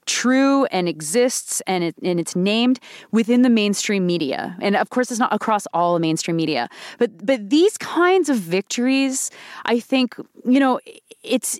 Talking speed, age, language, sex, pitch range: 170 wpm, 30-49, English, female, 185-240 Hz